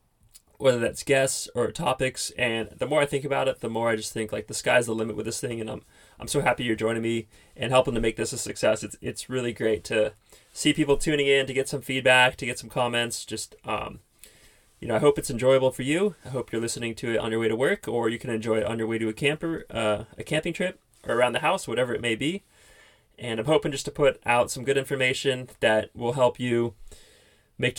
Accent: American